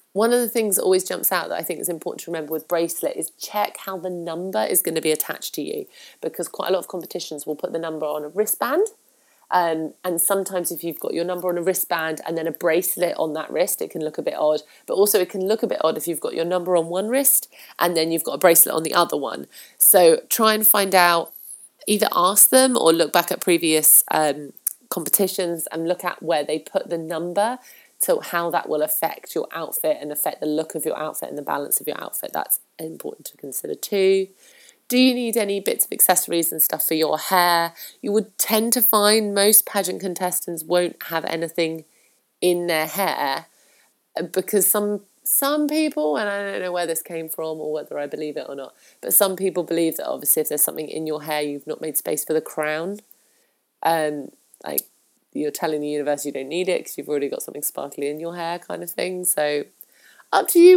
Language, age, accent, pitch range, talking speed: English, 30-49, British, 160-205 Hz, 225 wpm